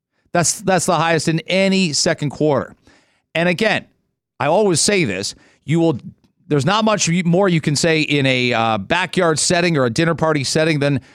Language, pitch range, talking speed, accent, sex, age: English, 145-190 Hz, 185 wpm, American, male, 40-59